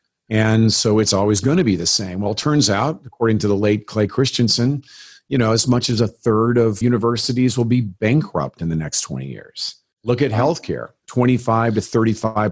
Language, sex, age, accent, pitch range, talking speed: English, male, 50-69, American, 100-120 Hz, 190 wpm